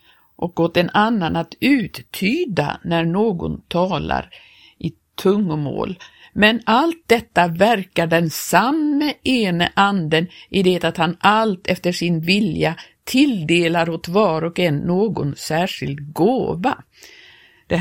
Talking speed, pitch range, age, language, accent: 120 wpm, 165-200 Hz, 50-69, Swedish, native